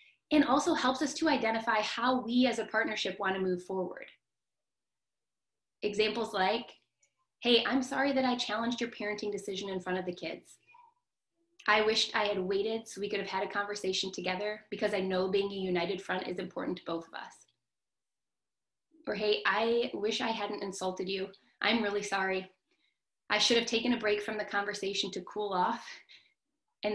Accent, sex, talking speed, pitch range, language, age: American, female, 180 wpm, 190-235 Hz, English, 20-39